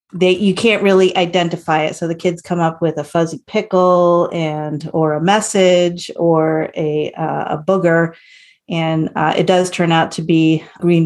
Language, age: English, 40-59